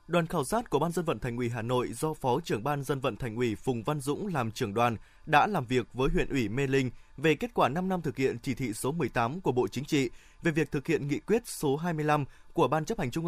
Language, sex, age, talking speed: Vietnamese, male, 20-39, 275 wpm